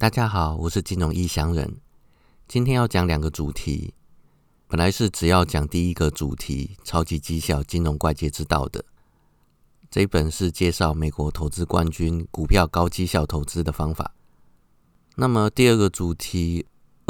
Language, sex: Chinese, male